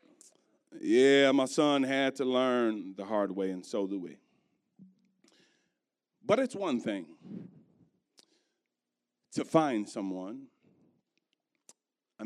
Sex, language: male, English